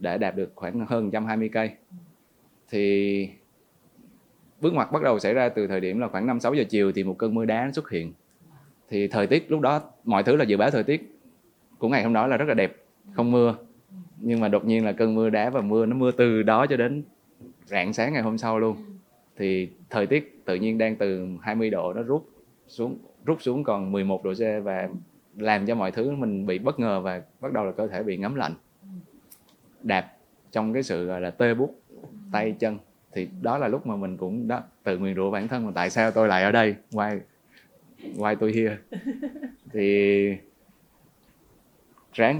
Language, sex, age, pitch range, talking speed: Vietnamese, male, 20-39, 100-130 Hz, 205 wpm